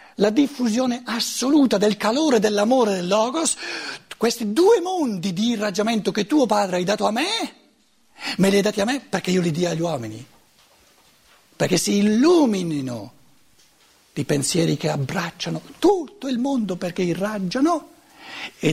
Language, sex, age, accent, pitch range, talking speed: Italian, male, 60-79, native, 145-215 Hz, 145 wpm